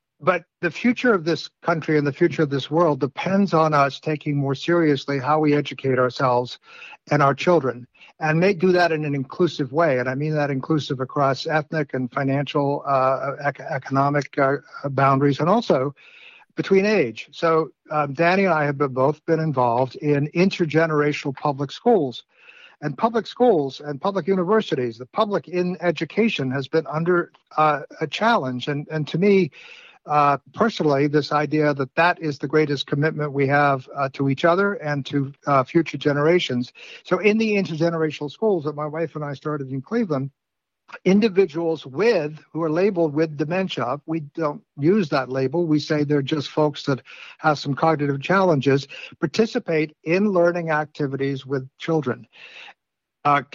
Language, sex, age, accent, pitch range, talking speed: English, male, 60-79, American, 140-170 Hz, 165 wpm